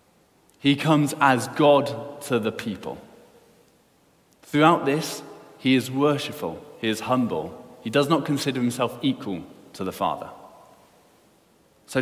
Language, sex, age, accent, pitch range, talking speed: English, male, 20-39, British, 115-145 Hz, 125 wpm